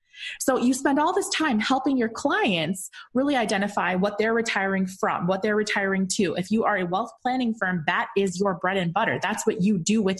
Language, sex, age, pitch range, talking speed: English, female, 20-39, 190-250 Hz, 220 wpm